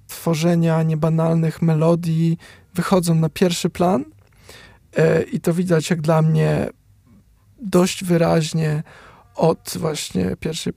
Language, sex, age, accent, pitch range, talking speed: Polish, male, 20-39, native, 155-175 Hz, 105 wpm